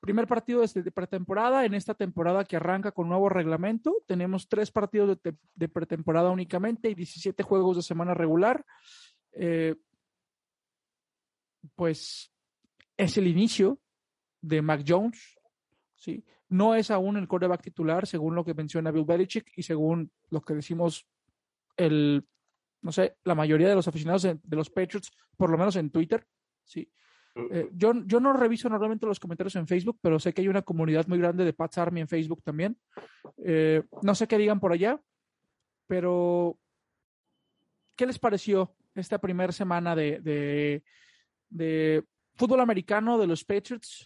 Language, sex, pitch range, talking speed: Spanish, male, 165-205 Hz, 160 wpm